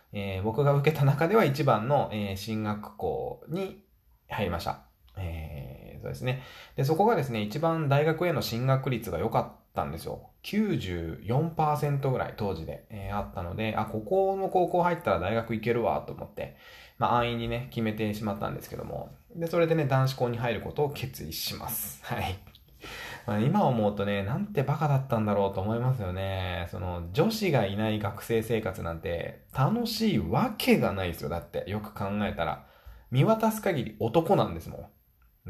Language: Japanese